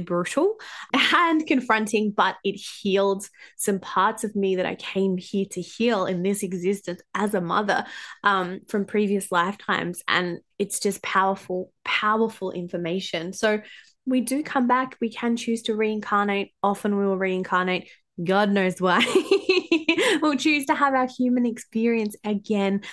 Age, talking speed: 20-39, 150 wpm